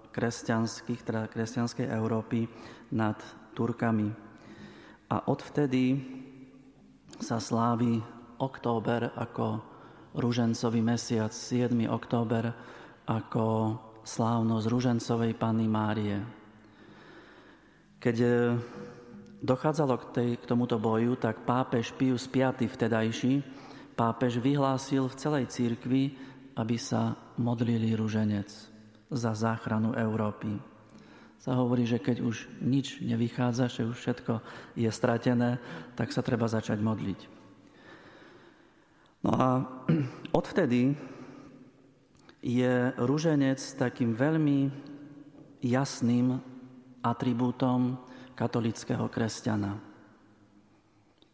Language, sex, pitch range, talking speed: Slovak, male, 115-130 Hz, 85 wpm